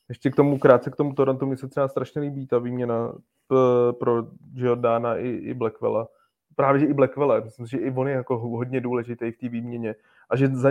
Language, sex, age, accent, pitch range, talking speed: Czech, male, 20-39, native, 120-130 Hz, 195 wpm